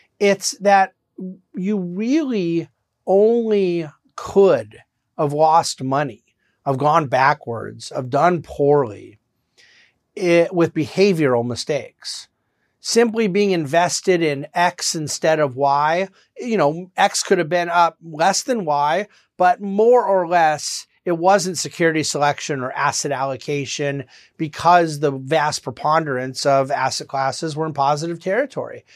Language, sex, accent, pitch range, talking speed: English, male, American, 140-185 Hz, 120 wpm